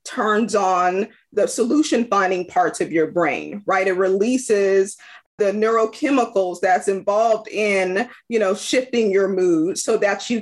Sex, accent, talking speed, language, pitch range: female, American, 145 wpm, English, 200-310 Hz